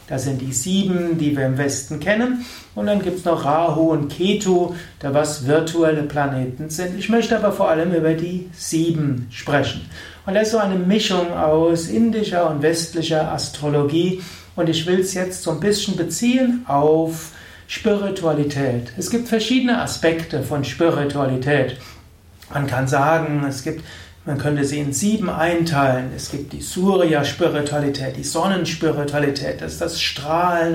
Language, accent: German, German